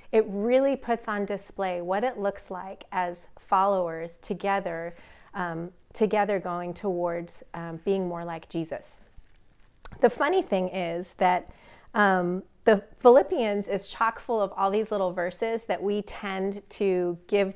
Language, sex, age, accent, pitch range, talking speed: English, female, 30-49, American, 180-220 Hz, 140 wpm